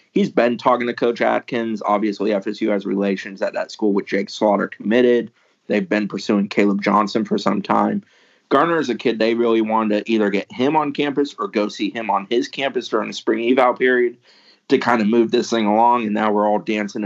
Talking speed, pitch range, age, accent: 220 wpm, 100-110 Hz, 30-49, American